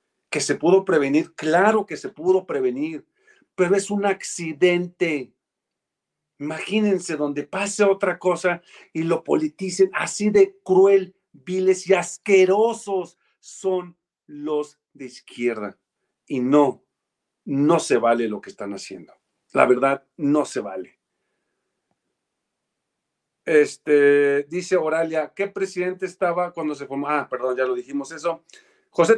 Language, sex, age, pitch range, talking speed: Spanish, male, 50-69, 155-205 Hz, 125 wpm